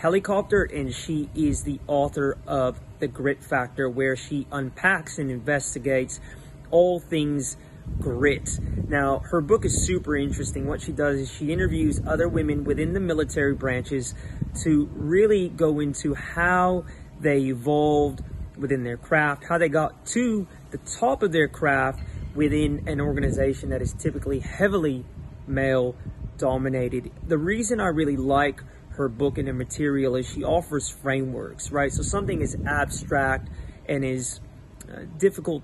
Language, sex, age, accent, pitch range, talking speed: English, male, 30-49, American, 130-155 Hz, 145 wpm